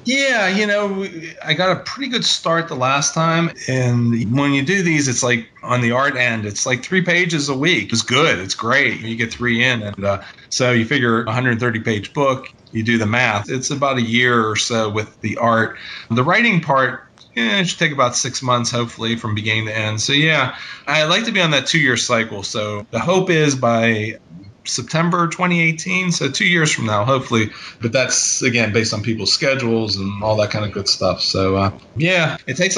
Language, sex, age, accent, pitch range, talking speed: English, male, 30-49, American, 110-150 Hz, 210 wpm